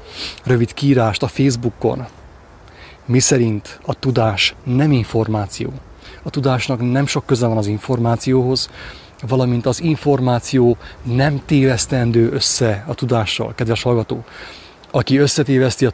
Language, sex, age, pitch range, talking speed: English, male, 30-49, 110-130 Hz, 115 wpm